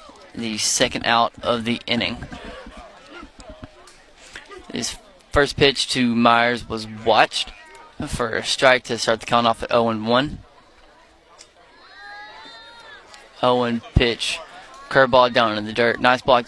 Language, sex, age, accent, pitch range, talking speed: English, male, 20-39, American, 115-130 Hz, 115 wpm